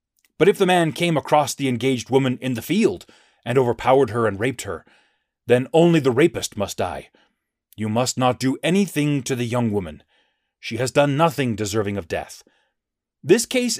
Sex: male